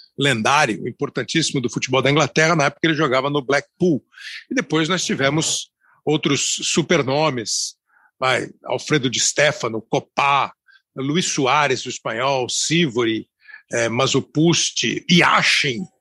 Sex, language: male, Portuguese